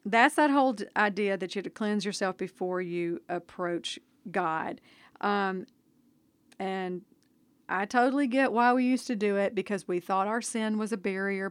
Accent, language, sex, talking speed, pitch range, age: American, English, female, 170 wpm, 185-230 Hz, 40-59